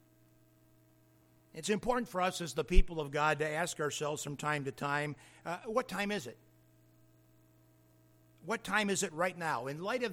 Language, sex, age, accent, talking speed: English, male, 50-69, American, 180 wpm